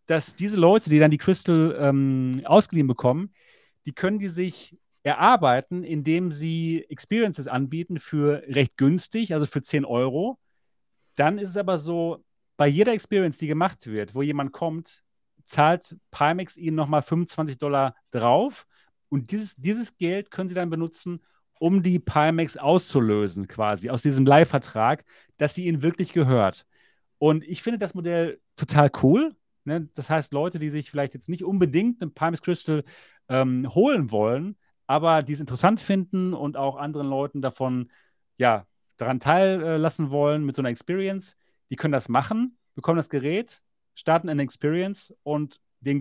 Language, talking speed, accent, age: German, 155 wpm, German, 40-59